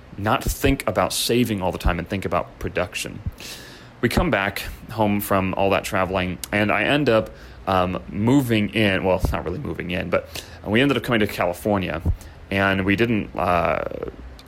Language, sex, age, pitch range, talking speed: English, male, 30-49, 90-110 Hz, 180 wpm